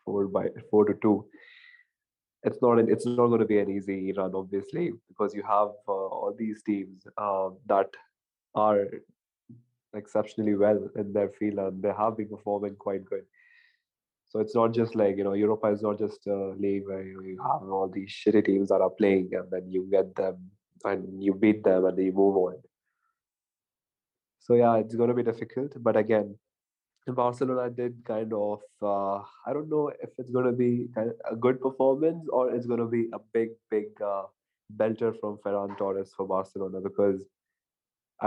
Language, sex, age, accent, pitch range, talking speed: English, male, 20-39, Indian, 100-120 Hz, 180 wpm